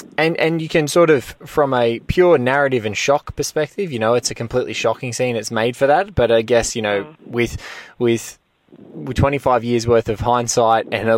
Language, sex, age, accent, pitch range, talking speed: English, male, 20-39, Australian, 110-125 Hz, 210 wpm